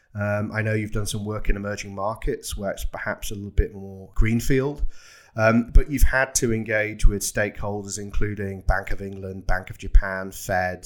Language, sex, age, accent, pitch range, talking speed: English, male, 30-49, British, 100-120 Hz, 190 wpm